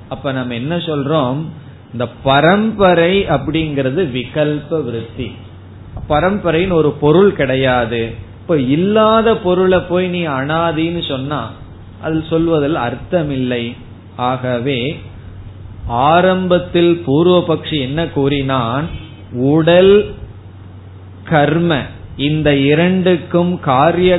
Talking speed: 45 wpm